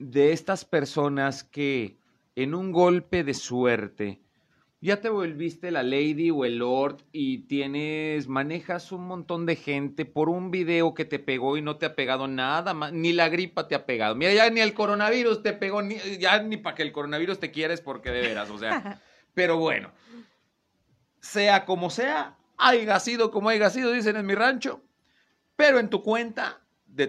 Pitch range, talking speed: 130-205 Hz, 180 wpm